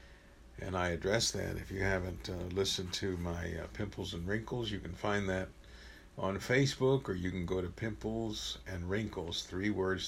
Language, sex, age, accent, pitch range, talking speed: English, male, 60-79, American, 80-95 Hz, 185 wpm